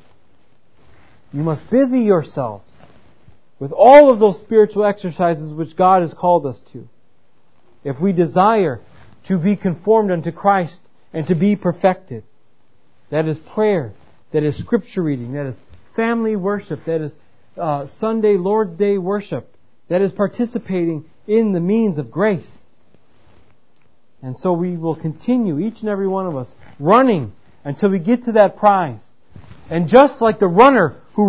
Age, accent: 40-59, American